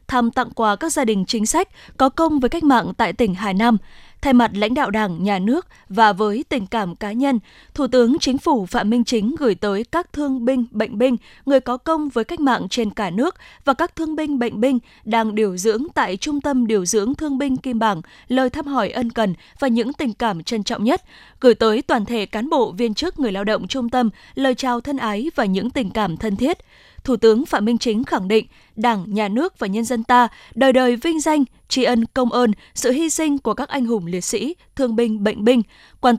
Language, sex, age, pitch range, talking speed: Vietnamese, female, 20-39, 220-270 Hz, 235 wpm